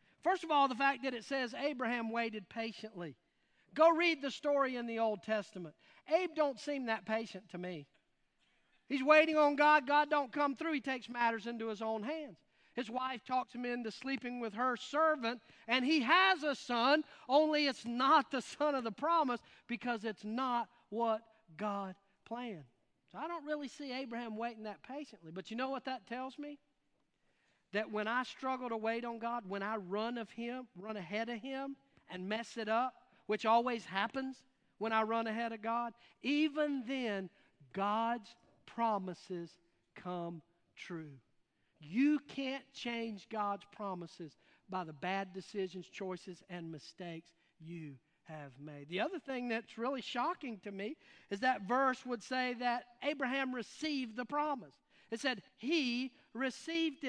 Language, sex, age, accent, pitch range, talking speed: English, male, 40-59, American, 205-270 Hz, 165 wpm